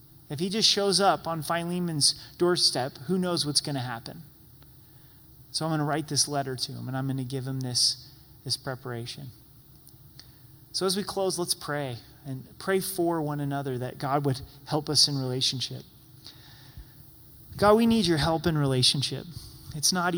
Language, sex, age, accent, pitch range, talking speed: English, male, 30-49, American, 130-170 Hz, 175 wpm